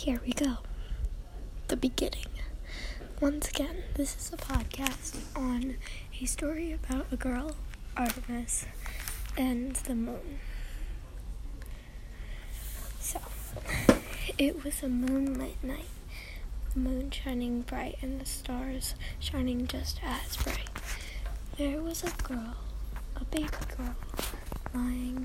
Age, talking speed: 10-29, 110 wpm